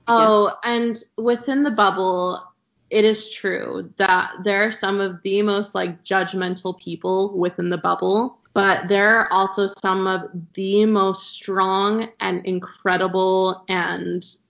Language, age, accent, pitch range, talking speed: English, 20-39, American, 185-210 Hz, 135 wpm